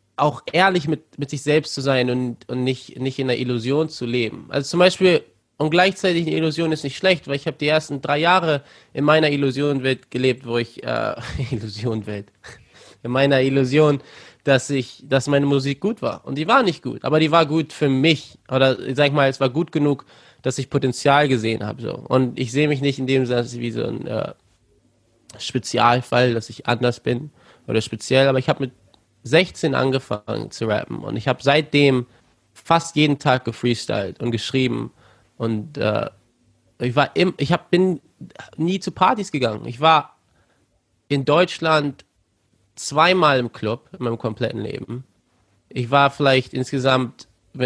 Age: 20-39